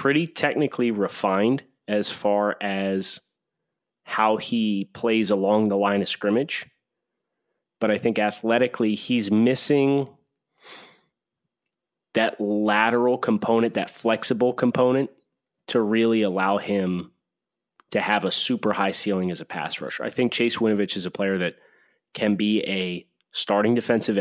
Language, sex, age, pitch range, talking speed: English, male, 30-49, 100-115 Hz, 130 wpm